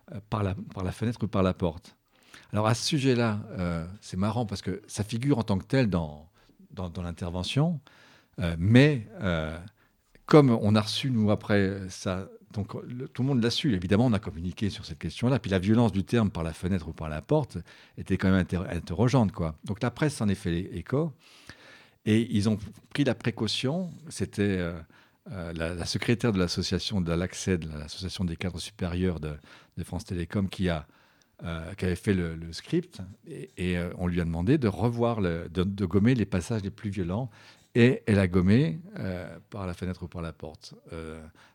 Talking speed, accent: 200 wpm, French